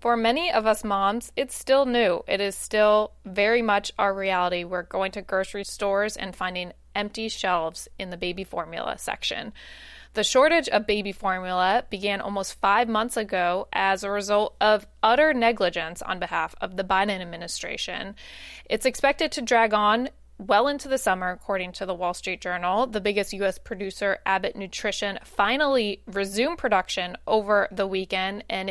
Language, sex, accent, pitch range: English, female, American, 190-225 Hz